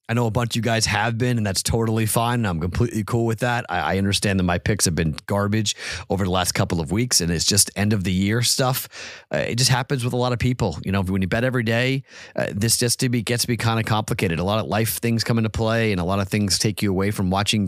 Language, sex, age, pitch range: English, male, 30-49, 95-120 Hz